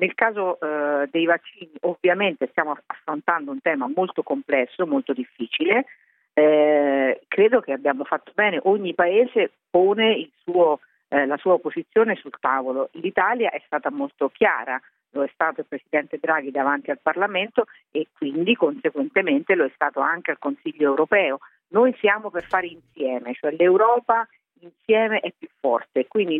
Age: 50-69